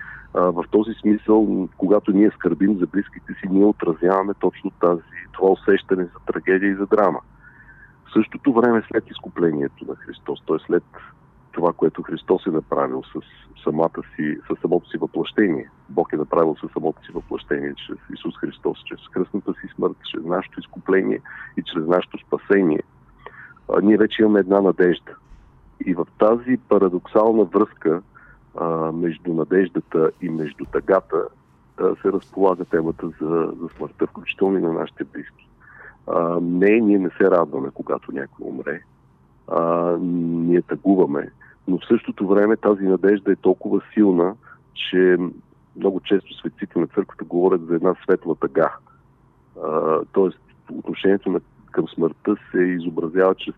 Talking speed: 145 wpm